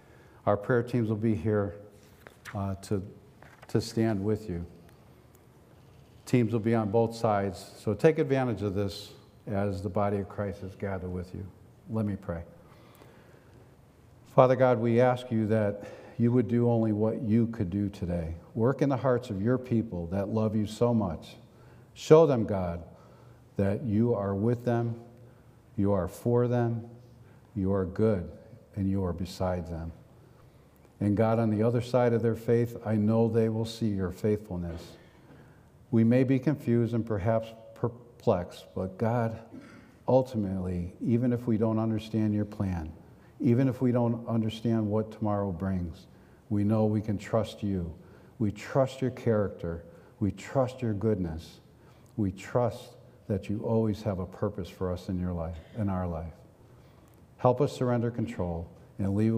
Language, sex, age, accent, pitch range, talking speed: English, male, 50-69, American, 100-120 Hz, 160 wpm